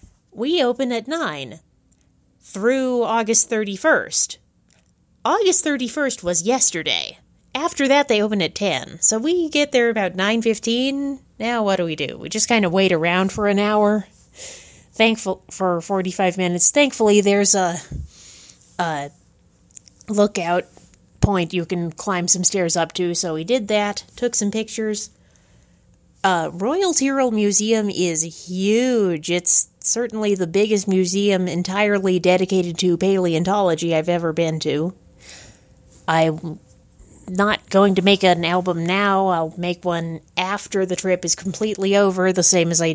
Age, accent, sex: 30-49, American, female